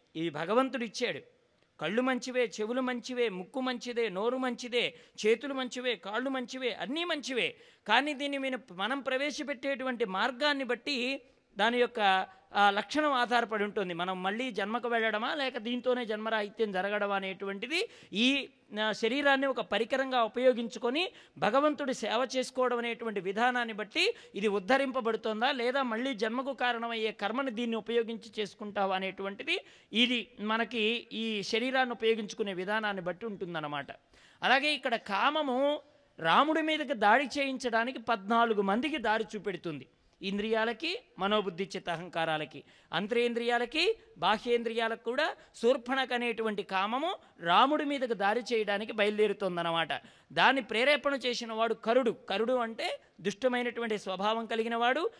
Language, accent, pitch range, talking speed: English, Indian, 210-260 Hz, 90 wpm